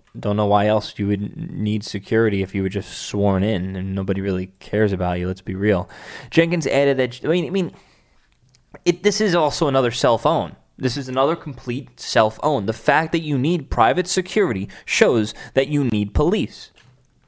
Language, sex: English, male